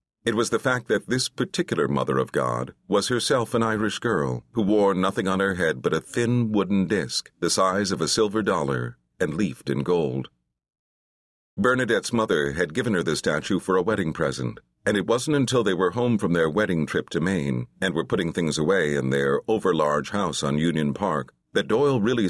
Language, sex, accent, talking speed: English, male, American, 205 wpm